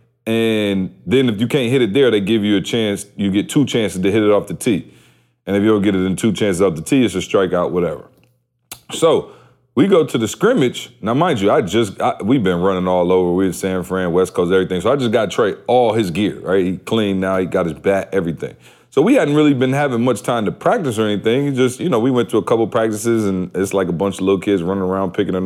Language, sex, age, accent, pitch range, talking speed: English, male, 30-49, American, 95-130 Hz, 265 wpm